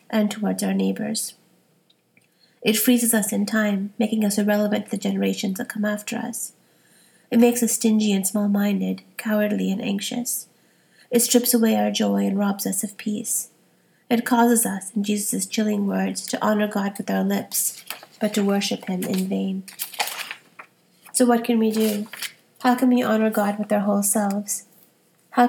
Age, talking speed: 30-49, 170 wpm